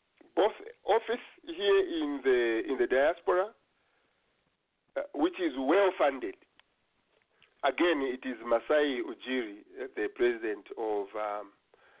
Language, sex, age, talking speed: English, male, 50-69, 105 wpm